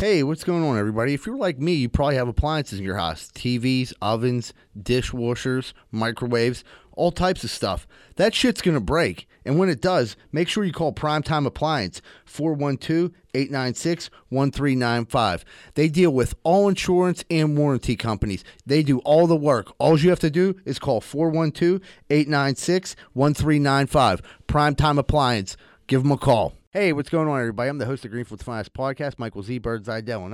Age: 30-49